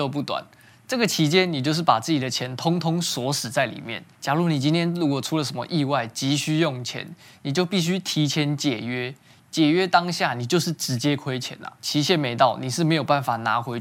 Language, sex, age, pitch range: Chinese, male, 20-39, 130-165 Hz